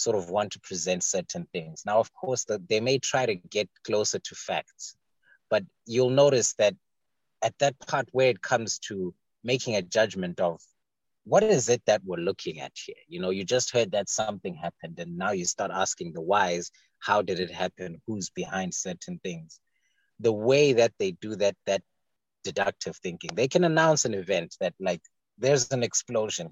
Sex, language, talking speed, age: male, English, 190 wpm, 30-49